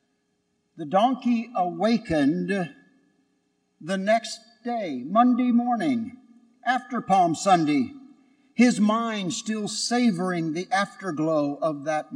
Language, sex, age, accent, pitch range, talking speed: English, male, 60-79, American, 190-265 Hz, 95 wpm